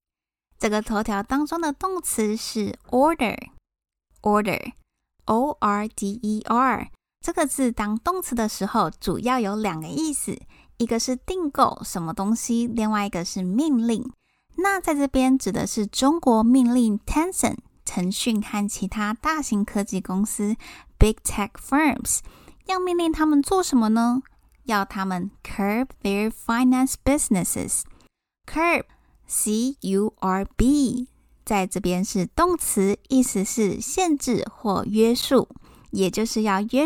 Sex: female